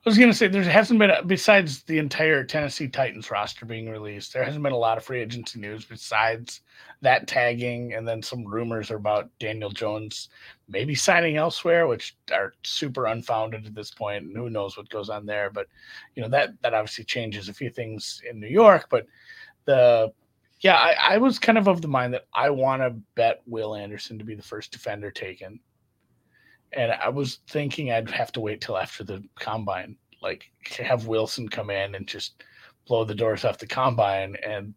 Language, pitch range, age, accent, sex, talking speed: English, 105-135 Hz, 30-49, American, male, 195 wpm